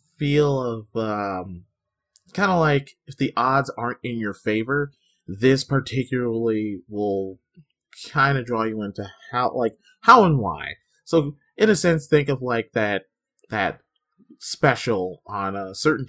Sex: male